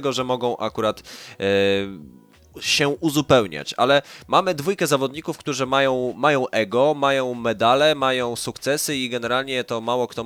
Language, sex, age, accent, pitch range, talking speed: Polish, male, 20-39, native, 115-145 Hz, 130 wpm